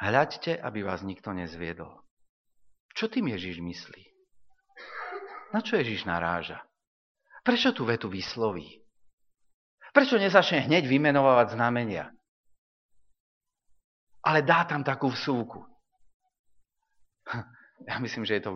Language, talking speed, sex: Slovak, 105 wpm, male